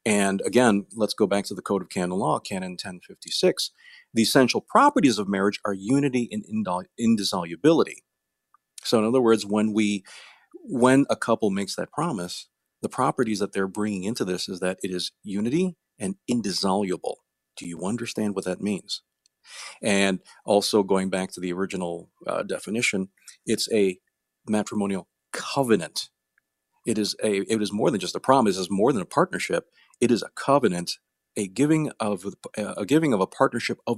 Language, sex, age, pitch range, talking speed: English, male, 40-59, 95-115 Hz, 170 wpm